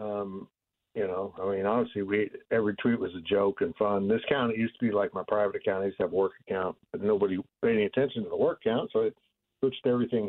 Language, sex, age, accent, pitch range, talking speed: English, male, 60-79, American, 105-135 Hz, 250 wpm